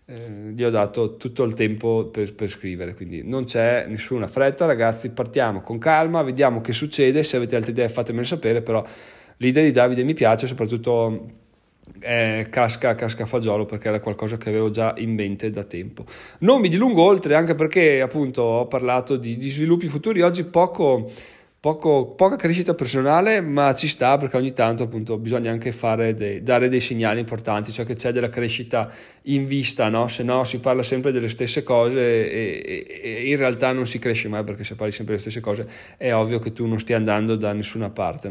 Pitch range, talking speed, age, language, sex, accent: 115-155 Hz, 195 wpm, 30-49, Italian, male, native